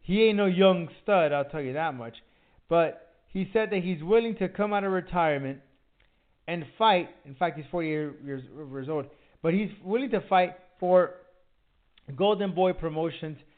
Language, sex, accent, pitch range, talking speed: English, male, American, 145-185 Hz, 170 wpm